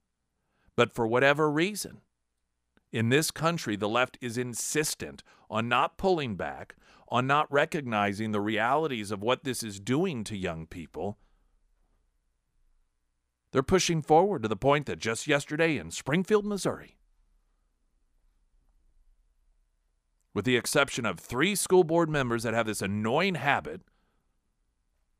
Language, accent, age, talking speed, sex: English, American, 50-69, 125 wpm, male